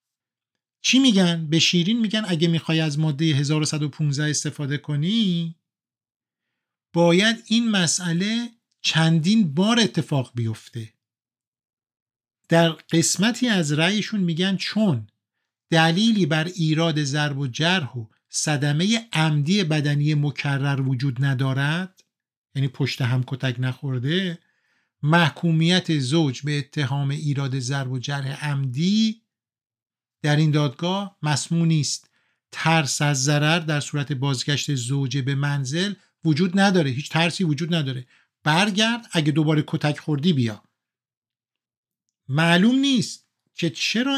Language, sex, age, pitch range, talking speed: Persian, male, 50-69, 140-185 Hz, 110 wpm